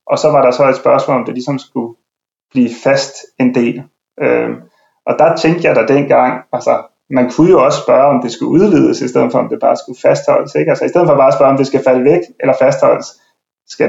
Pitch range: 125-140 Hz